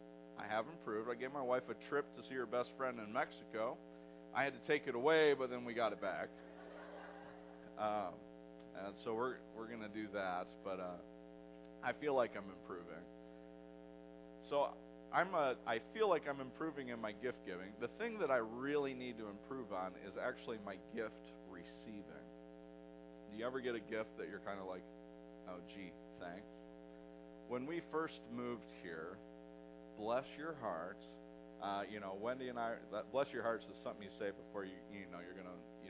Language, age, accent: English, 40-59, American